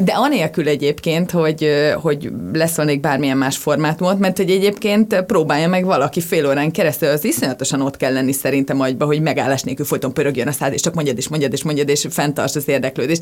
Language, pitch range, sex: Hungarian, 140-180 Hz, female